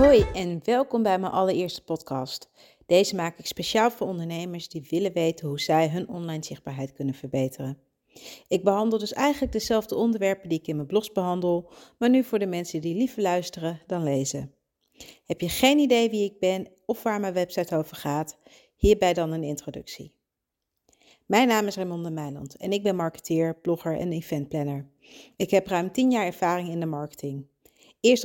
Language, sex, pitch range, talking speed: Dutch, female, 160-205 Hz, 180 wpm